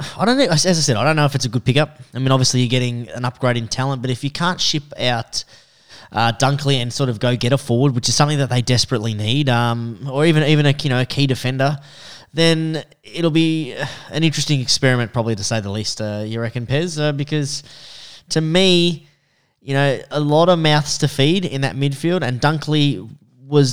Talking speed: 225 wpm